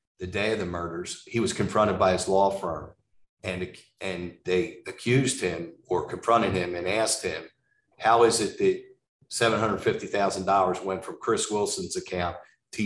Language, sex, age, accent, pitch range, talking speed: English, male, 50-69, American, 95-115 Hz, 175 wpm